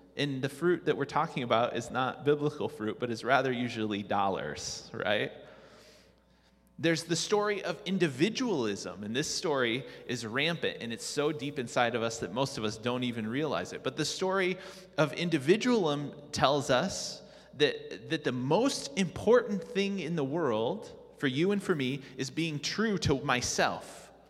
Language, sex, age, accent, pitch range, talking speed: English, male, 30-49, American, 130-180 Hz, 170 wpm